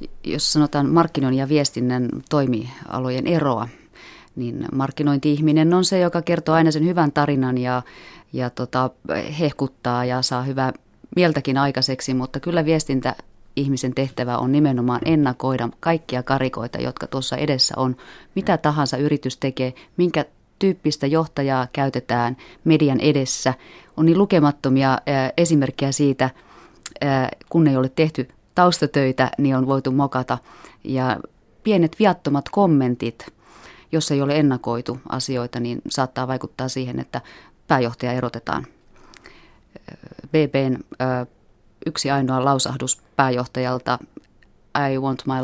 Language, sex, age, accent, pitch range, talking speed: Finnish, female, 30-49, native, 125-145 Hz, 110 wpm